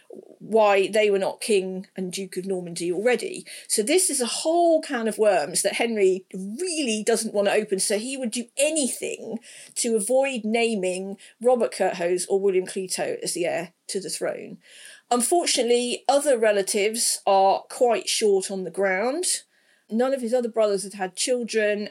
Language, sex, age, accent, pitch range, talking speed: English, female, 40-59, British, 195-260 Hz, 165 wpm